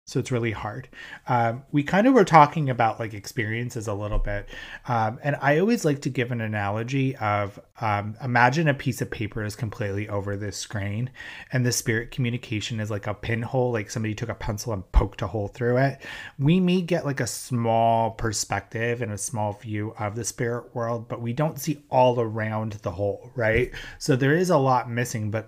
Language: English